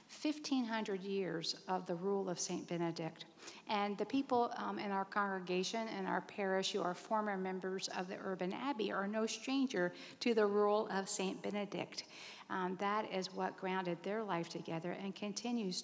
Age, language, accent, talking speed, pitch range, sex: 50-69, English, American, 170 wpm, 190-230 Hz, female